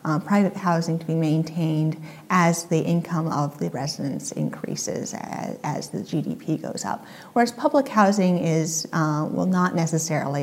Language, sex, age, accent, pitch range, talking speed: English, female, 30-49, American, 155-185 Hz, 155 wpm